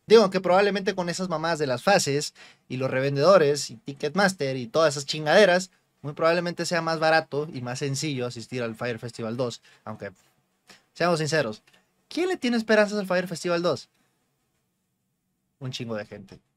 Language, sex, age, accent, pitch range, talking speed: Spanish, male, 20-39, Mexican, 125-175 Hz, 165 wpm